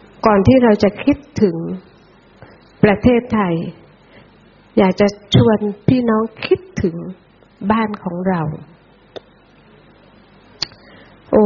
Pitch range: 190-235 Hz